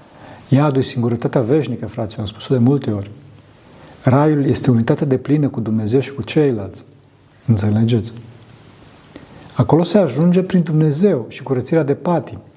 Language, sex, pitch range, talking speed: Romanian, male, 120-160 Hz, 145 wpm